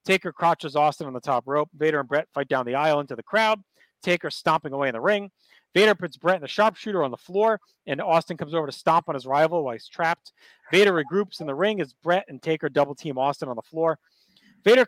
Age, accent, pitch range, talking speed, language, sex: 30-49, American, 145-185 Hz, 240 wpm, English, male